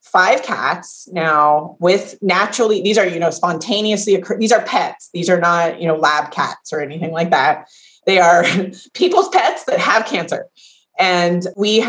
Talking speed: 170 wpm